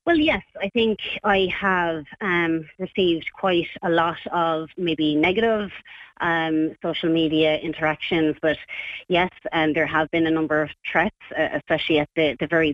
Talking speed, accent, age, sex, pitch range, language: 165 wpm, Irish, 30-49, female, 155-180 Hz, English